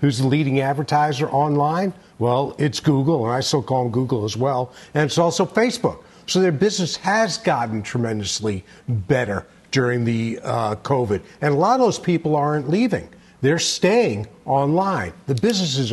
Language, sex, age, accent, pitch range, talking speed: English, male, 50-69, American, 125-165 Hz, 165 wpm